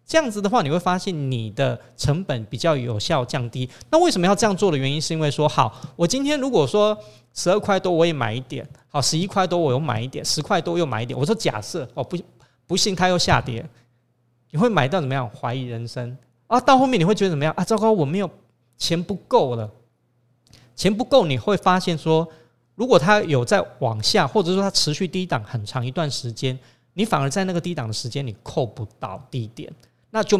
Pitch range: 125-180 Hz